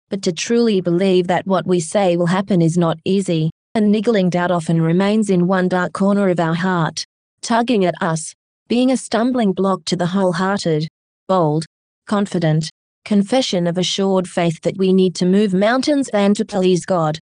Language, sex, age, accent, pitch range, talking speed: English, female, 30-49, Australian, 175-210 Hz, 175 wpm